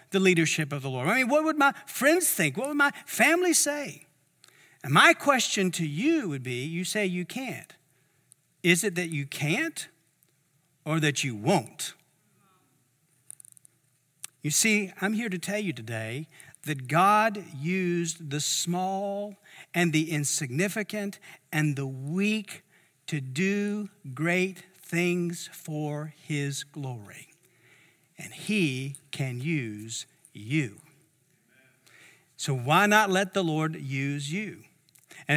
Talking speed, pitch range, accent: 130 wpm, 150-220 Hz, American